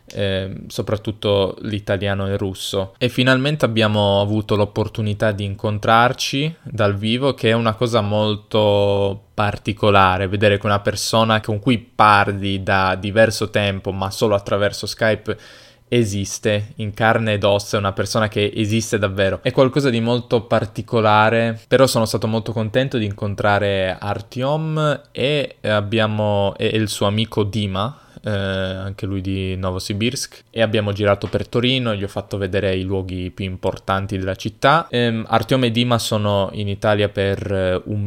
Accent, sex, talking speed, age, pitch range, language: native, male, 150 wpm, 10-29, 100-115 Hz, Italian